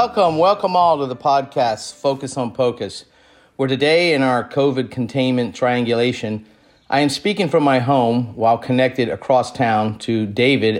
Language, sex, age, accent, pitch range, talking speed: English, male, 50-69, American, 115-135 Hz, 155 wpm